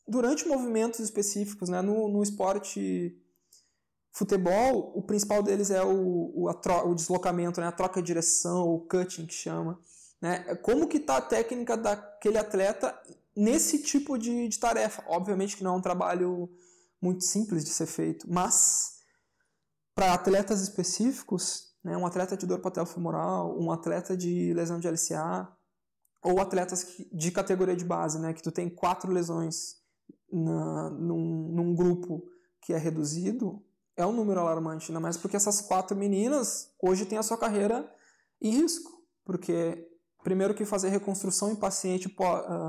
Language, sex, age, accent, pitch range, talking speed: Portuguese, male, 20-39, Brazilian, 175-210 Hz, 150 wpm